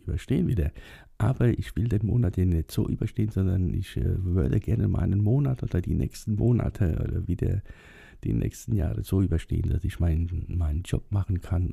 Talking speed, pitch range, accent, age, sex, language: 185 wpm, 85-105 Hz, German, 50-69, male, German